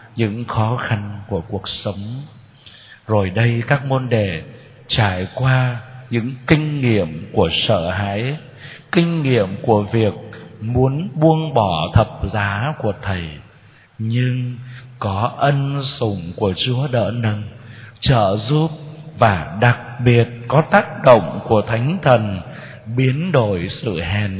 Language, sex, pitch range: Vietnamese, male, 105-135 Hz